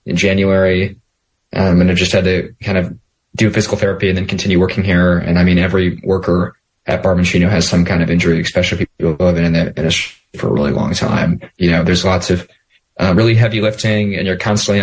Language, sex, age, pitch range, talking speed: English, male, 20-39, 90-100 Hz, 220 wpm